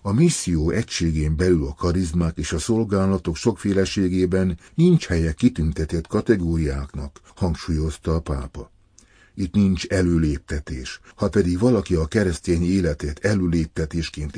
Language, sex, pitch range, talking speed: Hungarian, male, 80-100 Hz, 115 wpm